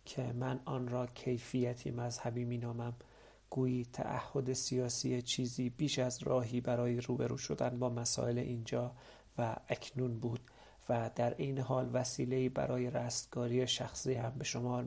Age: 40-59